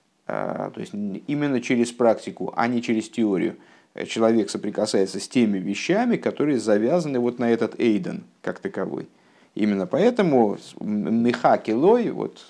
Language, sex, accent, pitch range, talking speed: Russian, male, native, 110-180 Hz, 125 wpm